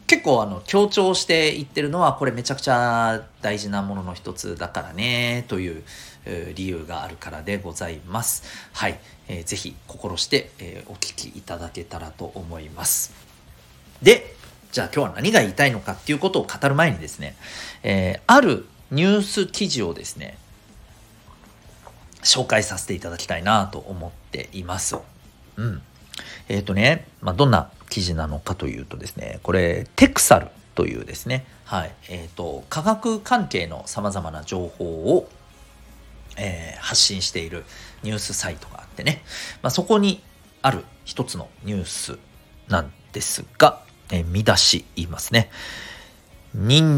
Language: Japanese